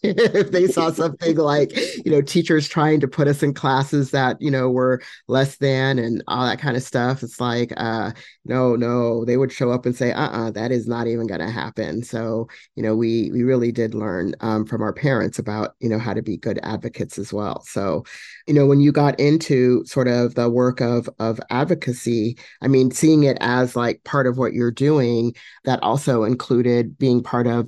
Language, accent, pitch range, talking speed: English, American, 110-130 Hz, 210 wpm